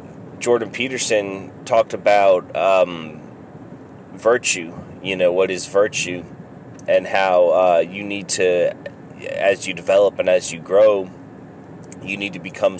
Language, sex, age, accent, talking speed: English, male, 30-49, American, 130 wpm